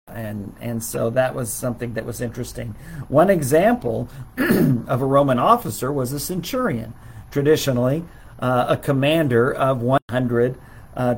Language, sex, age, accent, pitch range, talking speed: English, male, 50-69, American, 115-140 Hz, 135 wpm